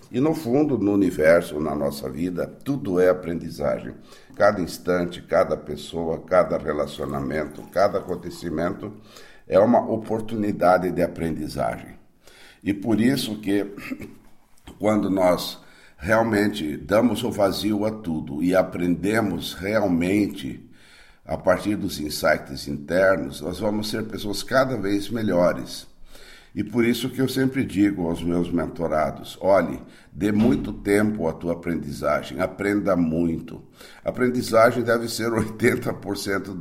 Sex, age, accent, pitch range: male, 60-79, Brazilian, 85-110 Hz